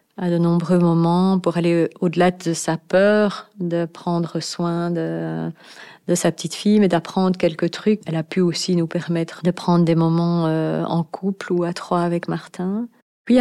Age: 30-49